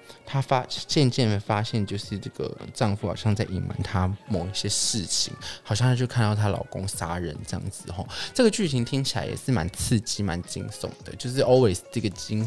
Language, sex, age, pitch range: Chinese, male, 20-39, 100-135 Hz